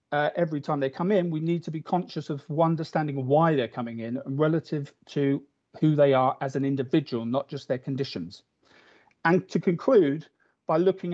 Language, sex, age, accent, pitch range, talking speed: English, male, 40-59, British, 135-165 Hz, 190 wpm